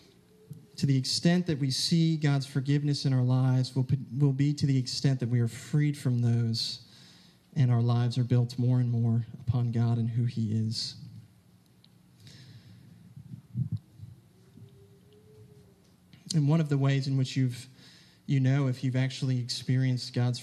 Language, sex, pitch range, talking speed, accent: English, male, 120-135 Hz, 155 wpm, American